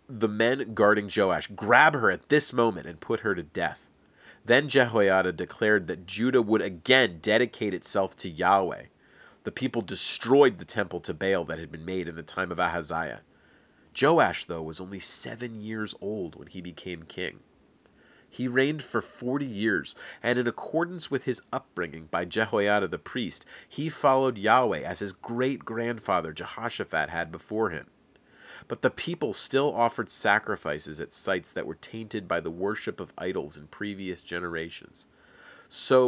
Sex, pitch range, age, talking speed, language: male, 95-130 Hz, 30-49, 160 wpm, English